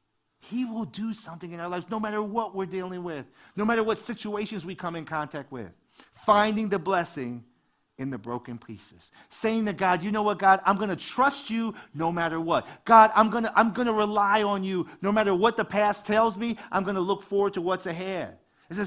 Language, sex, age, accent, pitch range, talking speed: English, male, 40-59, American, 160-220 Hz, 220 wpm